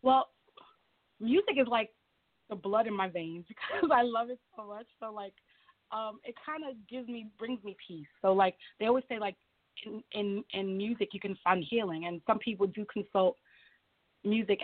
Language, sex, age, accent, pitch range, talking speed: English, female, 20-39, American, 195-235 Hz, 190 wpm